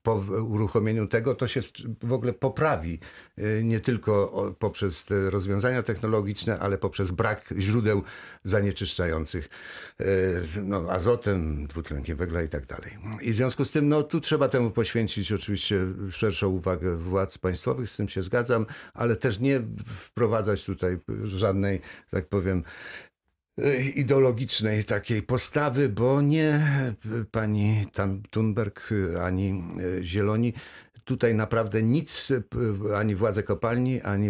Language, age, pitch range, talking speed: Polish, 50-69, 95-115 Hz, 120 wpm